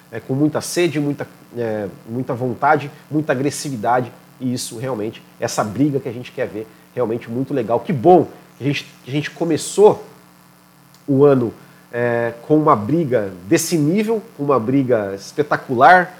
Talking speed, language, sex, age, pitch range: 160 wpm, Portuguese, male, 40-59, 130-165 Hz